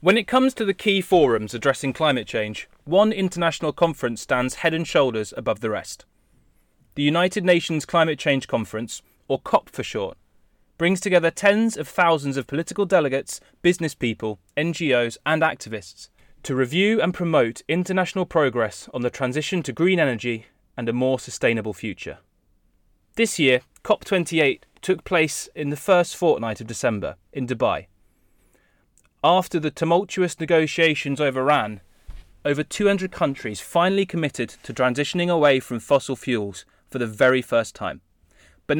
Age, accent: 20-39, British